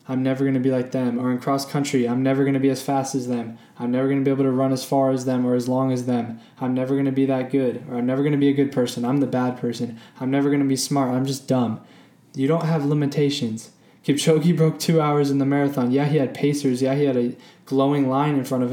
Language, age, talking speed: English, 10-29, 290 wpm